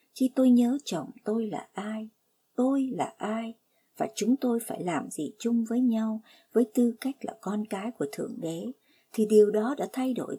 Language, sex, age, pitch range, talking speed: Vietnamese, male, 60-79, 215-255 Hz, 195 wpm